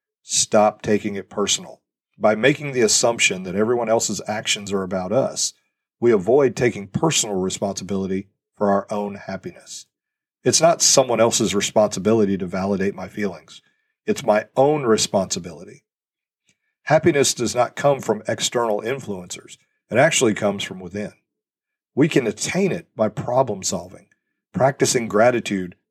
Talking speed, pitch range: 135 wpm, 100-125 Hz